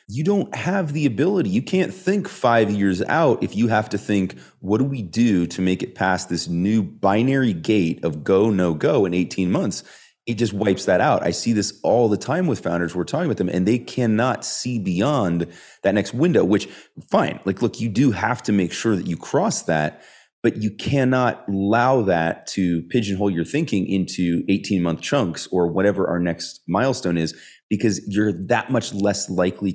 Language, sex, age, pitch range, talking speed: English, male, 30-49, 90-125 Hz, 200 wpm